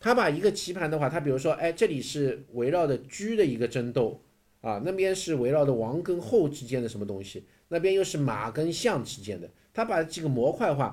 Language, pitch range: Chinese, 120-175 Hz